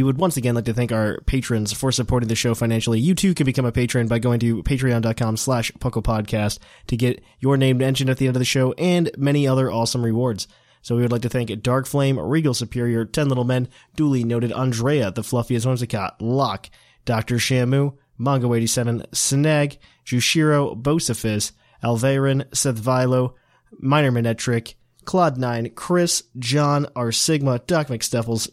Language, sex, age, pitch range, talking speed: English, male, 20-39, 120-145 Hz, 170 wpm